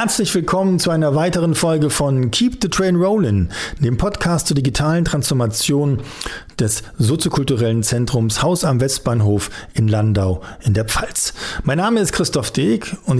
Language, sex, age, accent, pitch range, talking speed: German, male, 50-69, German, 120-165 Hz, 150 wpm